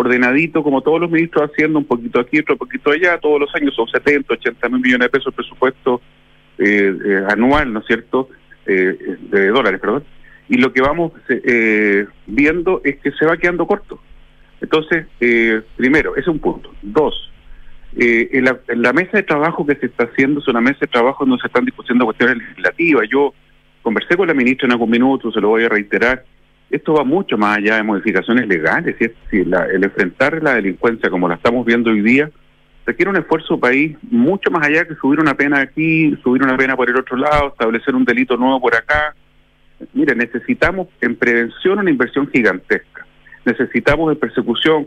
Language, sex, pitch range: Spanish, male, 120-155 Hz